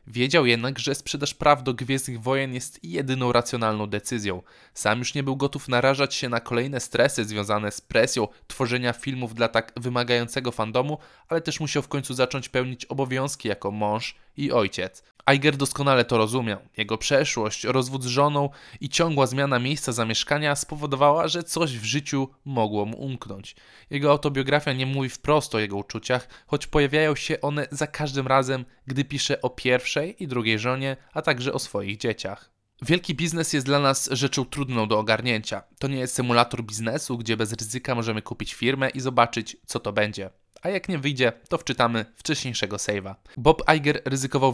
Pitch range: 115-140 Hz